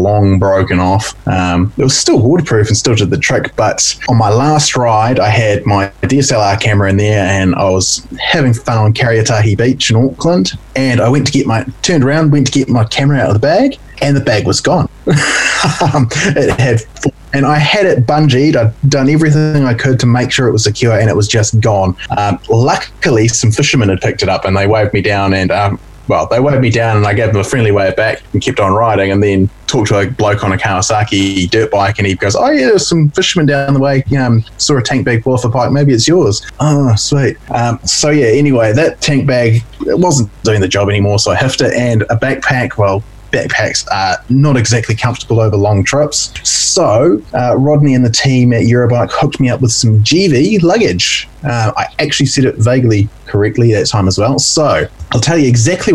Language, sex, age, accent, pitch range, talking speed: English, male, 20-39, Australian, 105-135 Hz, 225 wpm